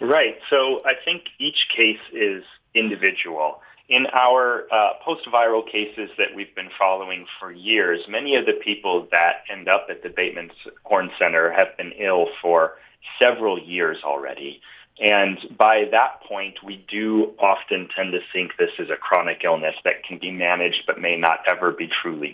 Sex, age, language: male, 30-49, English